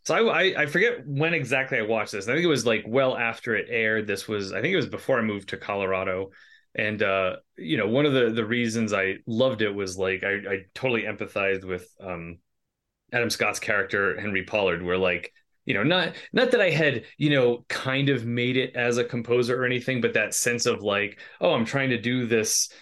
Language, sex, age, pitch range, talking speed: English, male, 30-49, 95-125 Hz, 225 wpm